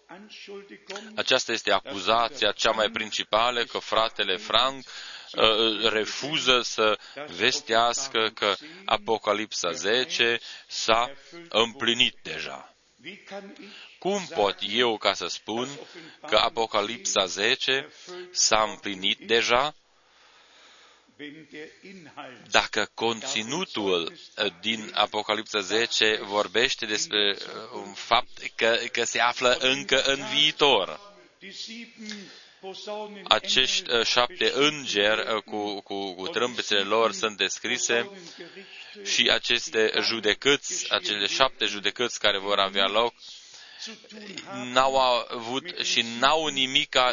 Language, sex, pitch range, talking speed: Romanian, male, 110-165 Hz, 90 wpm